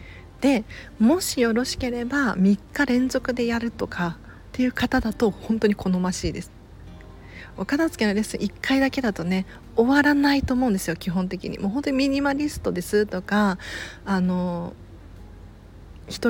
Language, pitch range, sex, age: Japanese, 170-240 Hz, female, 40-59